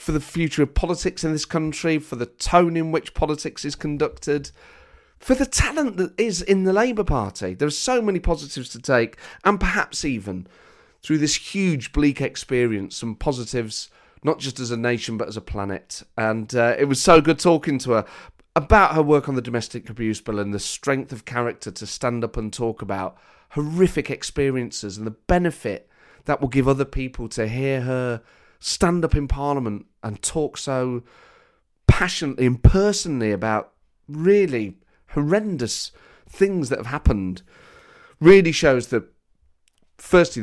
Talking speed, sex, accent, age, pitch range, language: 170 wpm, male, British, 30-49, 110-155 Hz, English